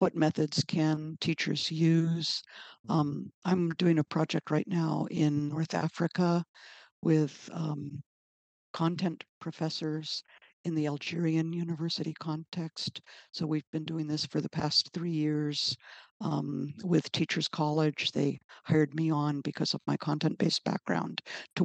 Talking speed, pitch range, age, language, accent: 135 wpm, 145-165 Hz, 60-79, English, American